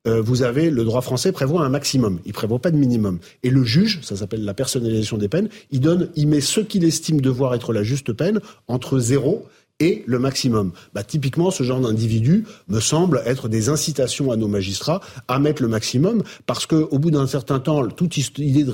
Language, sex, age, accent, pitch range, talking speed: French, male, 40-59, French, 115-150 Hz, 210 wpm